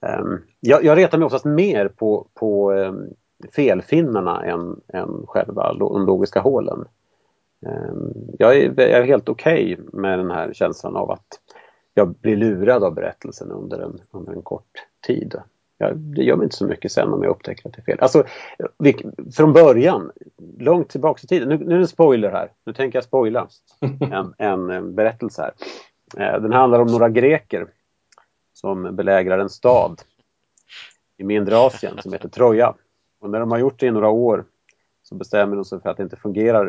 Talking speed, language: 185 wpm, Swedish